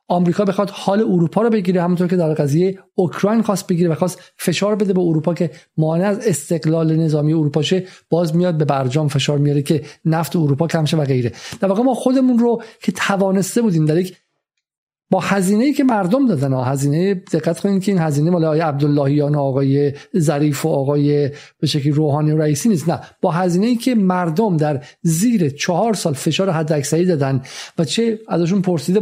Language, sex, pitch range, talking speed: Persian, male, 160-200 Hz, 190 wpm